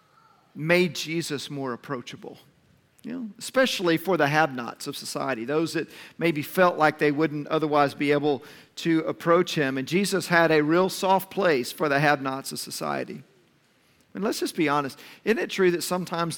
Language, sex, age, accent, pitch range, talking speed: English, male, 50-69, American, 150-185 Hz, 170 wpm